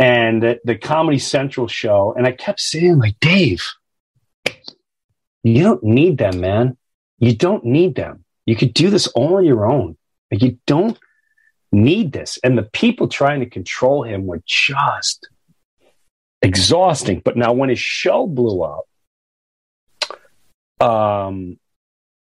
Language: English